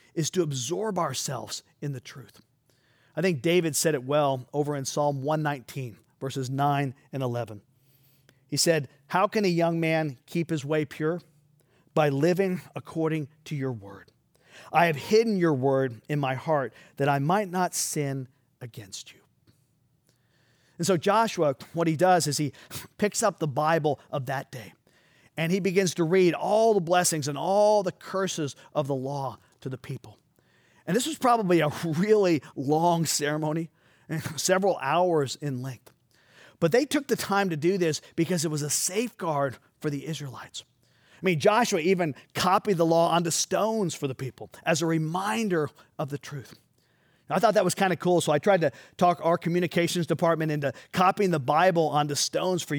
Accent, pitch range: American, 135-175 Hz